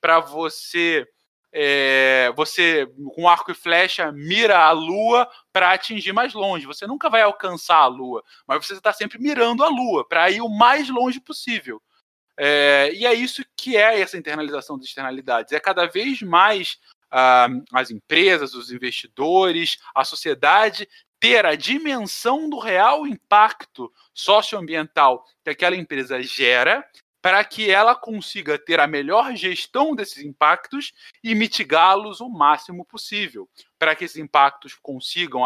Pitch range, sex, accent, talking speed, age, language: 150-220 Hz, male, Brazilian, 140 wpm, 20-39, Portuguese